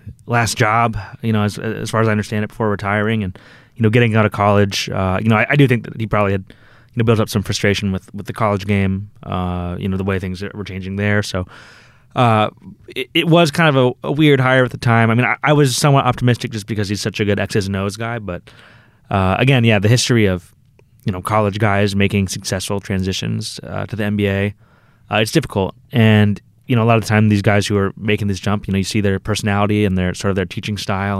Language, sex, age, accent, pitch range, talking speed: English, male, 20-39, American, 100-115 Hz, 250 wpm